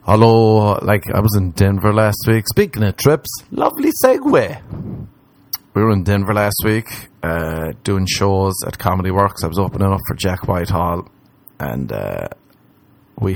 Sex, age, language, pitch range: male, 30-49, English, 95-125 Hz